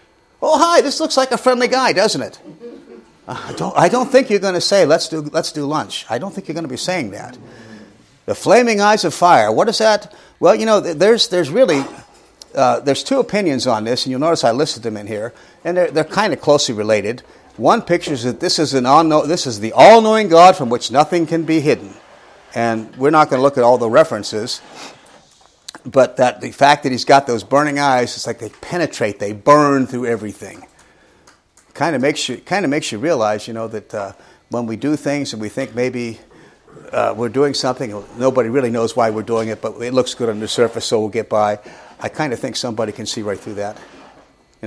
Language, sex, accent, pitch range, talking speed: English, male, American, 115-170 Hz, 220 wpm